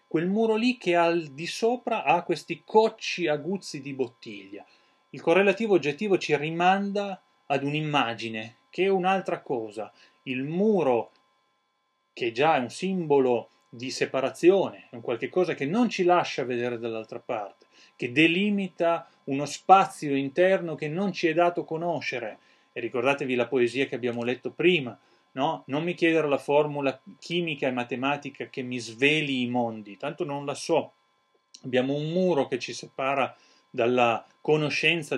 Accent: native